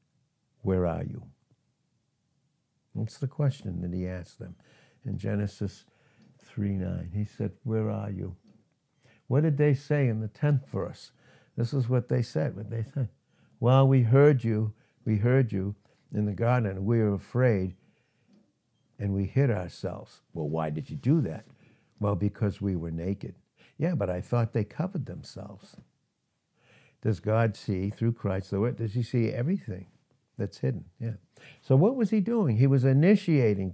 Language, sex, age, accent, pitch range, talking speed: English, male, 60-79, American, 105-145 Hz, 165 wpm